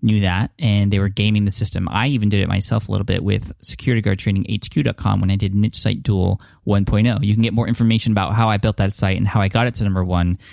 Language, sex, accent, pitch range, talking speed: English, male, American, 100-120 Hz, 250 wpm